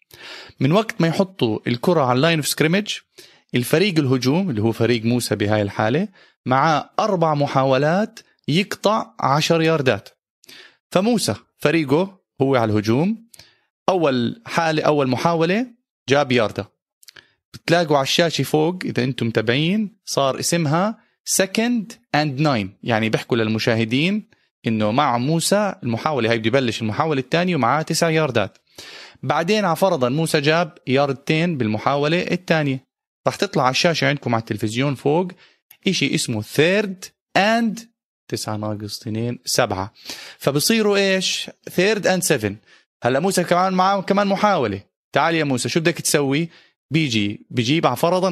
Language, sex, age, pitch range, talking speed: Arabic, male, 30-49, 120-180 Hz, 130 wpm